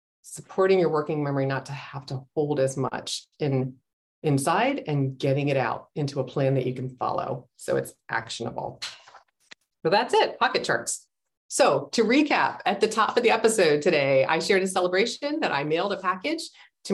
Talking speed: 180 wpm